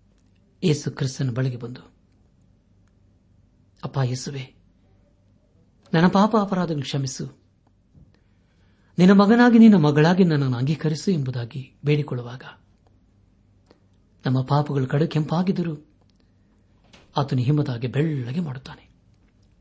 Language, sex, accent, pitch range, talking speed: Kannada, male, native, 100-145 Hz, 75 wpm